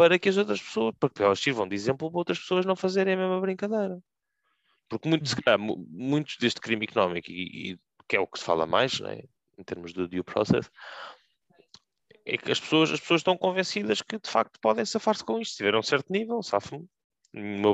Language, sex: Portuguese, male